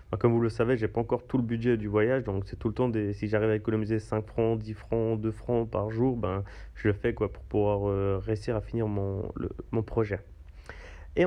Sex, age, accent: male, 30-49, French